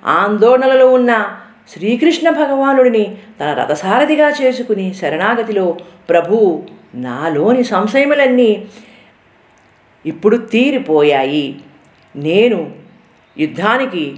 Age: 50-69